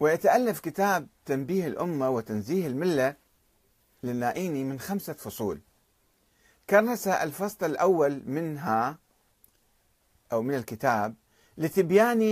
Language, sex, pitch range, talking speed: Arabic, male, 125-185 Hz, 90 wpm